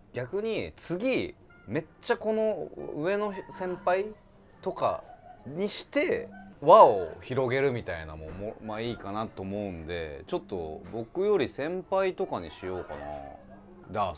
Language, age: Japanese, 30-49